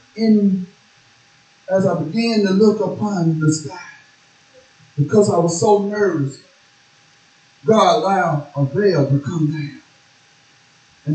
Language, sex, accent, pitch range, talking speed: English, male, American, 145-220 Hz, 120 wpm